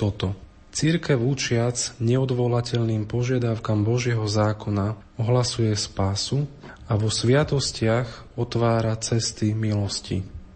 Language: Slovak